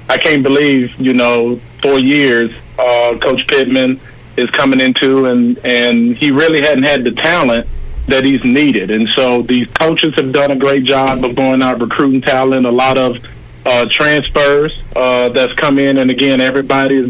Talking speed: 180 wpm